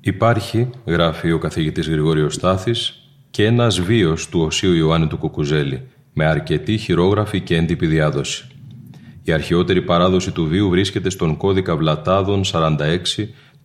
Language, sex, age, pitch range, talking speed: Greek, male, 30-49, 80-105 Hz, 130 wpm